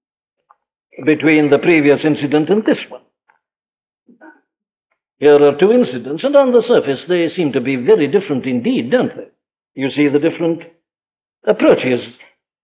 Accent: Indian